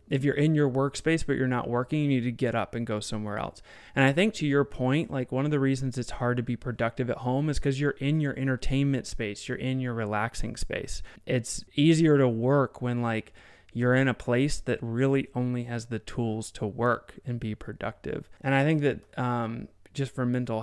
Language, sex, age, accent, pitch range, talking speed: English, male, 20-39, American, 110-130 Hz, 225 wpm